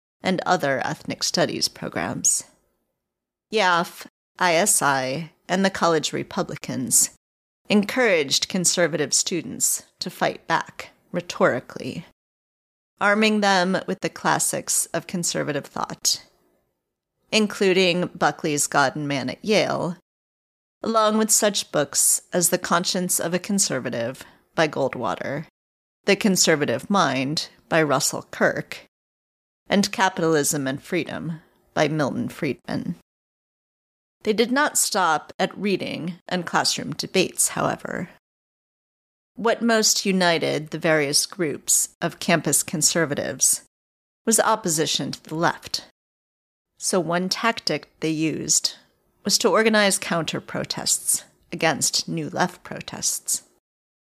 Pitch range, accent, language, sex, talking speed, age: 145-200 Hz, American, English, female, 105 wpm, 40-59